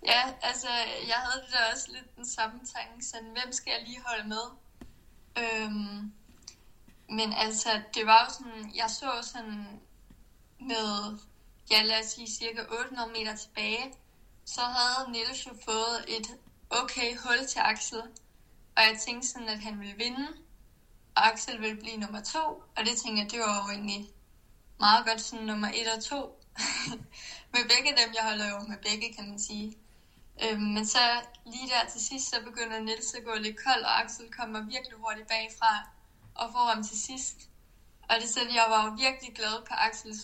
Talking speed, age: 180 wpm, 20-39